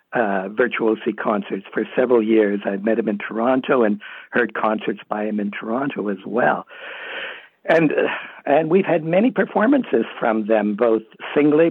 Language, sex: English, male